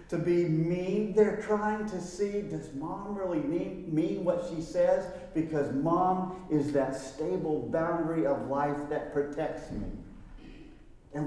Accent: American